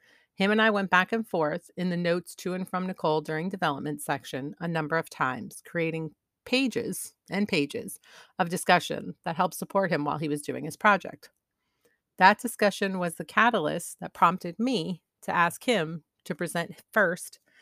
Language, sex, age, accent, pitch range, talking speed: English, female, 40-59, American, 155-200 Hz, 175 wpm